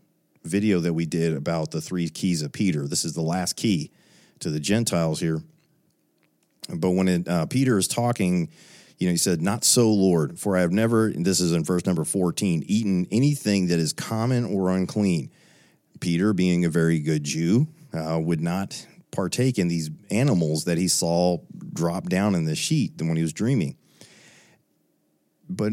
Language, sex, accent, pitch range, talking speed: English, male, American, 85-115 Hz, 180 wpm